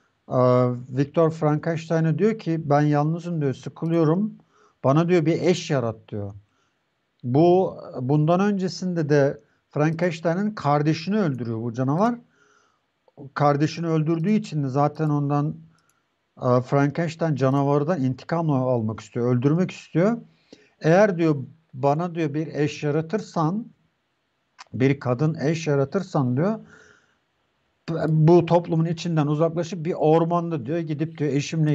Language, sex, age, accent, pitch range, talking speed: Turkish, male, 50-69, native, 140-175 Hz, 110 wpm